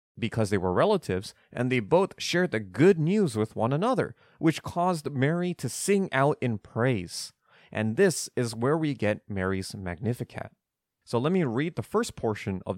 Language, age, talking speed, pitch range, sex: English, 30-49, 180 wpm, 110-145 Hz, male